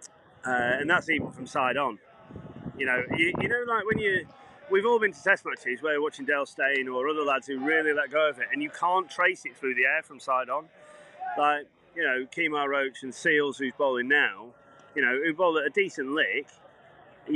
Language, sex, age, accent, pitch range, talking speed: English, male, 30-49, British, 130-155 Hz, 225 wpm